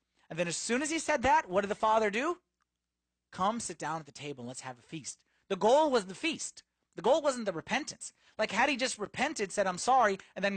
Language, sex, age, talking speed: English, male, 30-49, 250 wpm